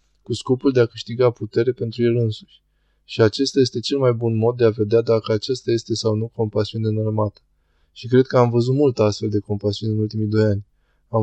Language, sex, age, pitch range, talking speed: Romanian, male, 20-39, 110-125 Hz, 215 wpm